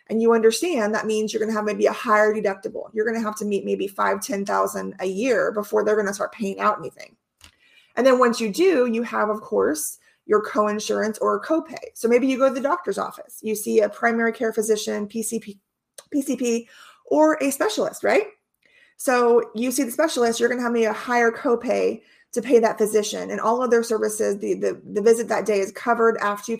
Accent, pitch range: American, 210-245 Hz